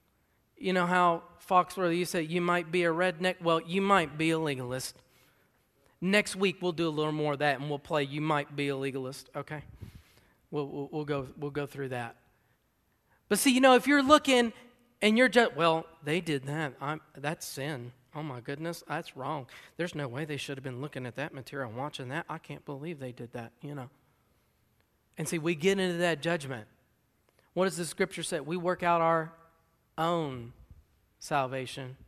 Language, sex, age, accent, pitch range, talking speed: English, male, 40-59, American, 140-185 Hz, 200 wpm